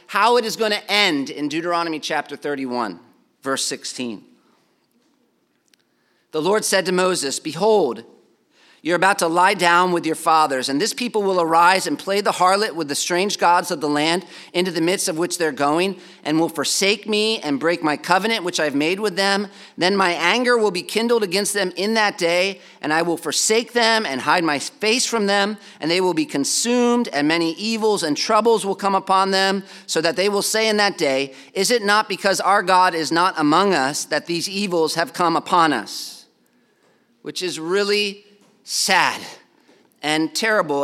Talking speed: 190 wpm